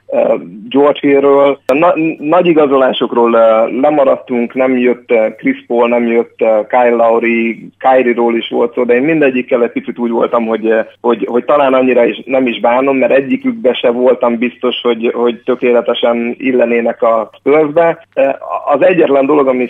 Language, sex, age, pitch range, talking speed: Hungarian, male, 30-49, 120-135 Hz, 150 wpm